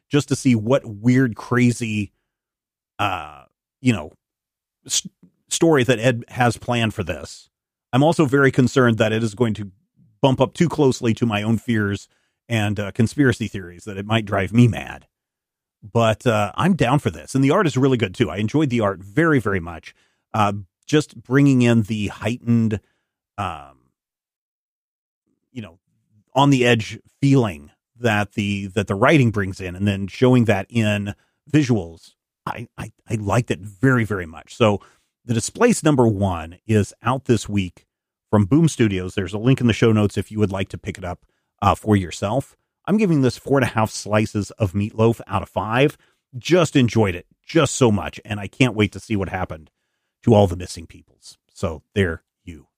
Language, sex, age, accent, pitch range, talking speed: English, male, 30-49, American, 100-125 Hz, 180 wpm